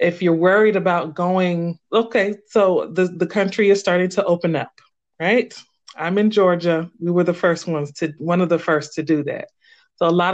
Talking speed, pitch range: 205 wpm, 165-210 Hz